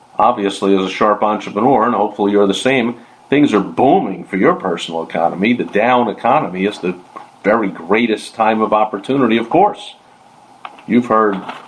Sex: male